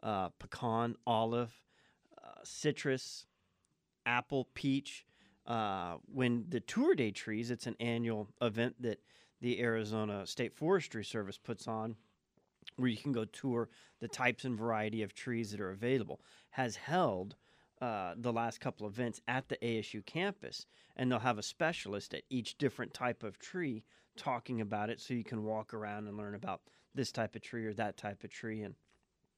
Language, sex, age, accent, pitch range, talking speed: English, male, 40-59, American, 110-130 Hz, 170 wpm